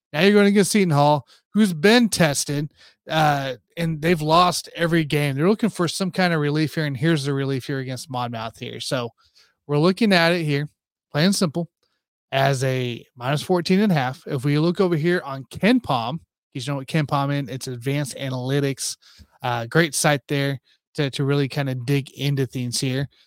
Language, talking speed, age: English, 195 wpm, 30-49